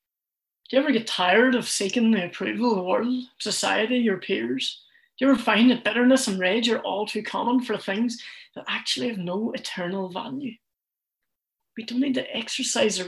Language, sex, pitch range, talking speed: English, female, 195-255 Hz, 190 wpm